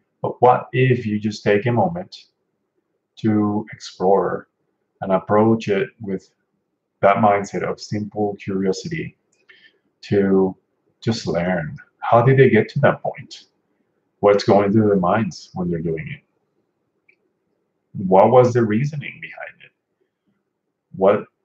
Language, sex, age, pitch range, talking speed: English, male, 30-49, 95-110 Hz, 125 wpm